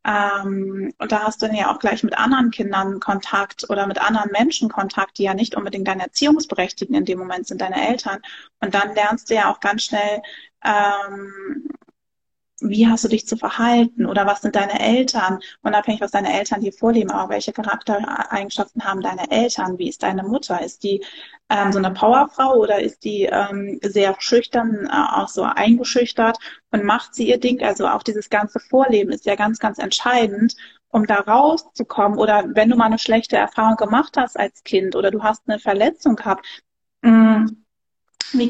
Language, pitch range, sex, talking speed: German, 200-245 Hz, female, 180 wpm